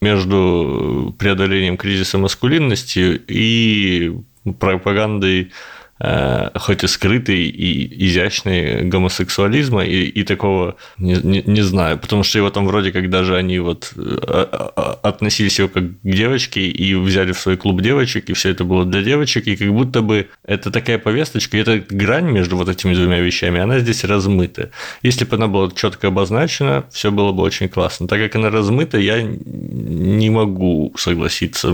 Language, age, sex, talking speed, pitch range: Russian, 20-39, male, 155 wpm, 90-110 Hz